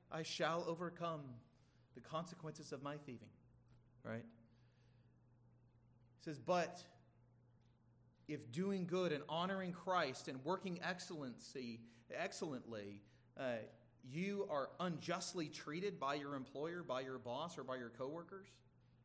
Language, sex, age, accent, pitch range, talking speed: English, male, 30-49, American, 120-170 Hz, 115 wpm